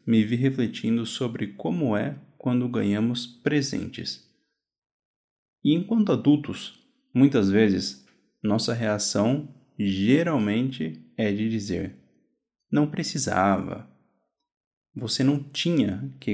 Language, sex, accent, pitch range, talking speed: Portuguese, male, Brazilian, 100-150 Hz, 95 wpm